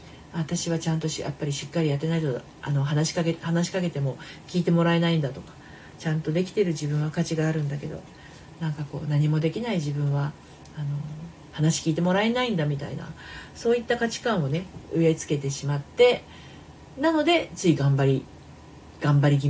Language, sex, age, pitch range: Japanese, female, 40-59, 145-180 Hz